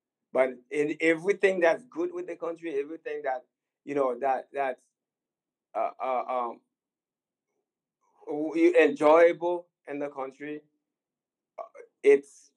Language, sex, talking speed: English, male, 110 wpm